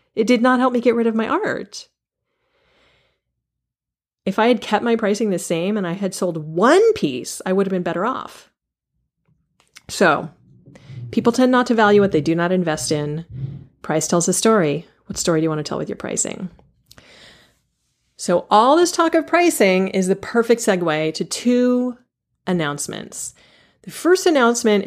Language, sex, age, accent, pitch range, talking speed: English, female, 30-49, American, 170-225 Hz, 175 wpm